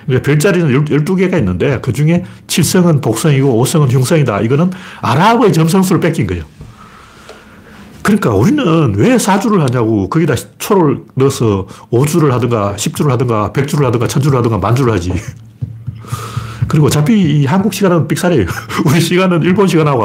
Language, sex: Korean, male